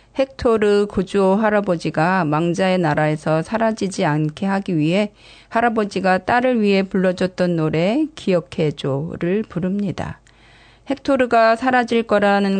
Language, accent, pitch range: Korean, native, 175-215 Hz